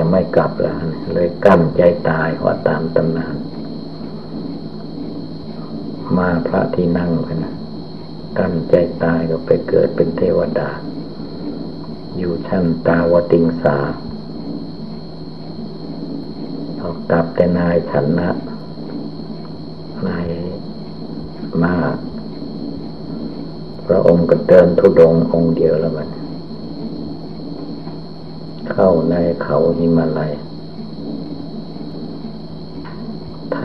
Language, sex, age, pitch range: Thai, male, 60-79, 80-85 Hz